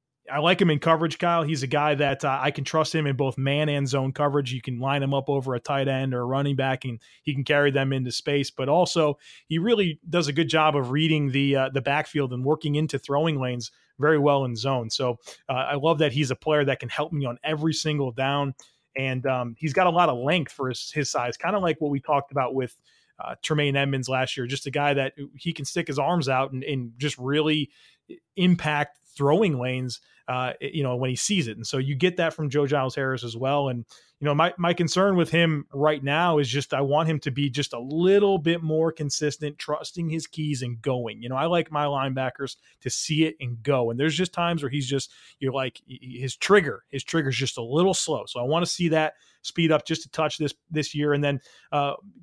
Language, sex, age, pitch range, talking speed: English, male, 30-49, 135-155 Hz, 245 wpm